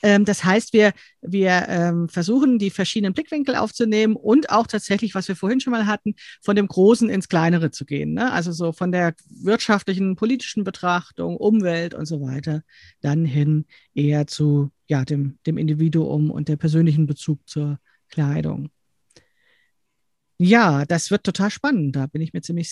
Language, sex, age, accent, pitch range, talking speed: German, female, 40-59, German, 165-215 Hz, 155 wpm